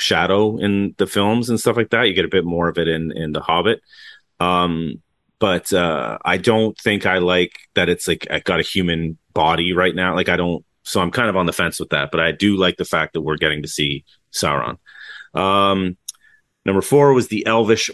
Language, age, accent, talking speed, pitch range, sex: English, 30-49, American, 225 wpm, 80-105 Hz, male